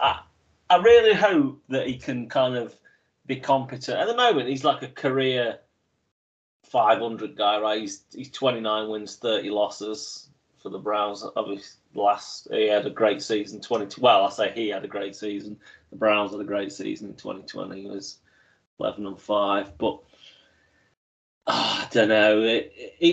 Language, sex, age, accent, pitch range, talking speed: English, male, 30-49, British, 100-120 Hz, 165 wpm